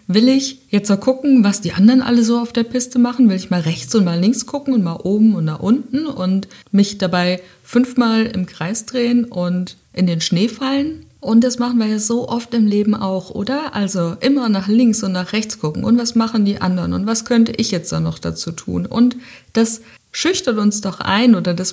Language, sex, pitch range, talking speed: German, female, 175-220 Hz, 225 wpm